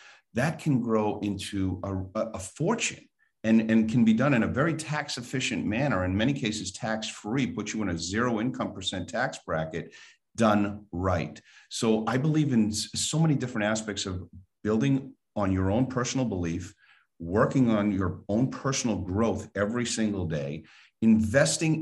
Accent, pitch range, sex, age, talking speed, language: American, 100-125 Hz, male, 50-69, 155 wpm, English